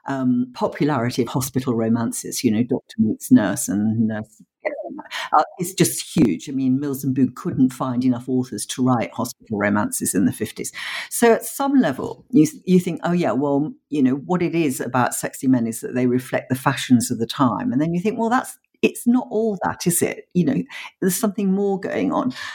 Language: English